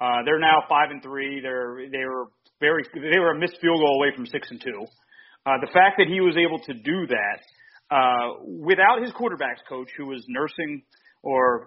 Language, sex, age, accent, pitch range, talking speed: English, male, 40-59, American, 130-185 Hz, 205 wpm